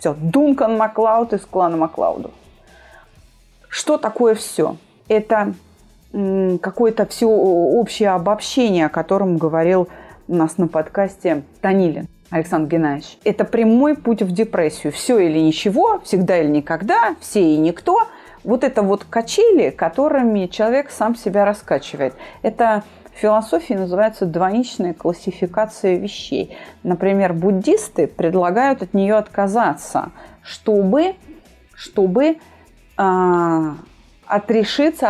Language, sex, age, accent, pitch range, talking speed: Russian, female, 30-49, native, 180-230 Hz, 110 wpm